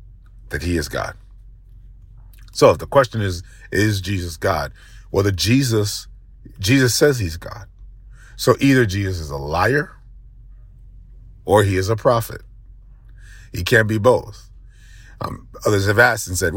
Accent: American